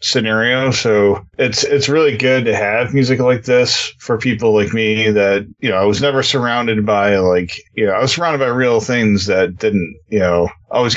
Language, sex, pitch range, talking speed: English, male, 100-130 Hz, 200 wpm